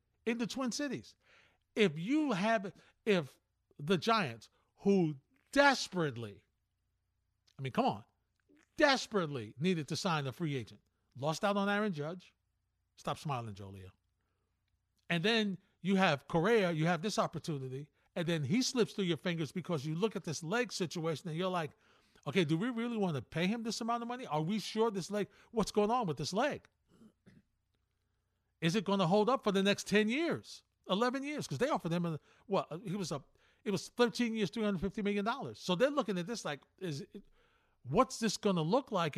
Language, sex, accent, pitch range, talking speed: English, male, American, 135-215 Hz, 190 wpm